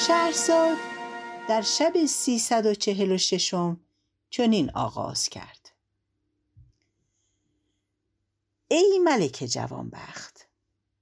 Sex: female